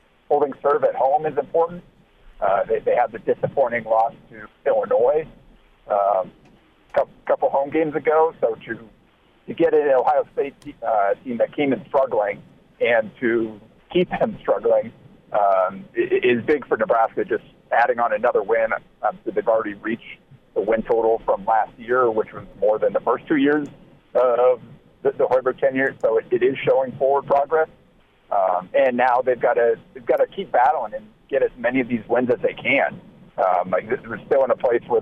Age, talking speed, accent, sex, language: 50-69, 185 wpm, American, male, English